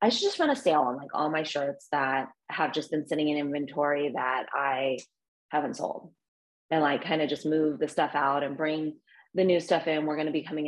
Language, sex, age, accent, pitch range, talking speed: English, female, 30-49, American, 150-175 Hz, 235 wpm